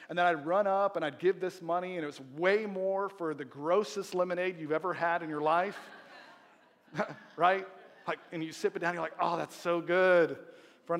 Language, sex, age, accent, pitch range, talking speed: English, male, 40-59, American, 150-195 Hz, 225 wpm